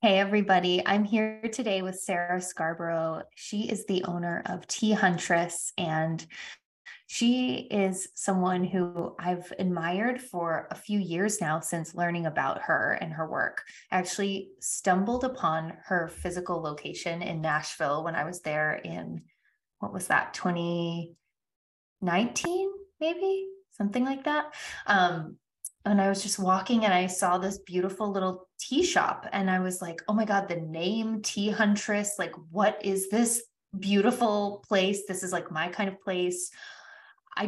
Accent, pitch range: American, 175-210 Hz